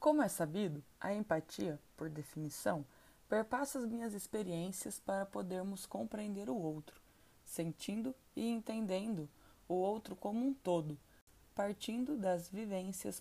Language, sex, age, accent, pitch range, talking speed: Portuguese, female, 20-39, Brazilian, 170-225 Hz, 125 wpm